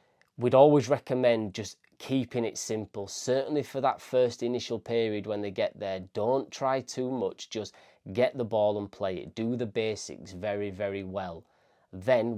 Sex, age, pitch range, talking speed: male, 20-39, 95-115 Hz, 170 wpm